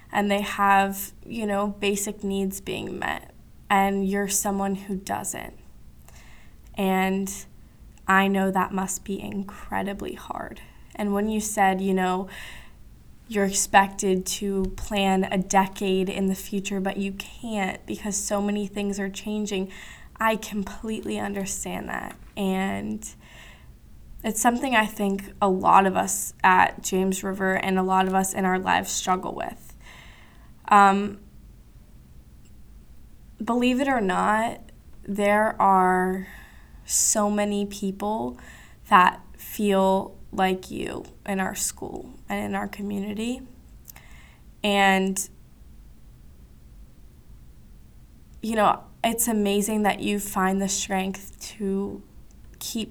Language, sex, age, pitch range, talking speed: English, female, 10-29, 190-205 Hz, 120 wpm